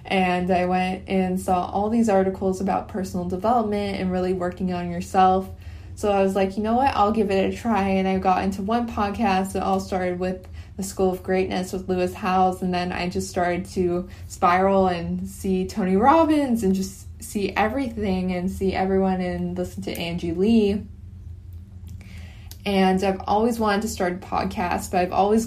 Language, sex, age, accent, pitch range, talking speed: English, female, 20-39, American, 180-195 Hz, 185 wpm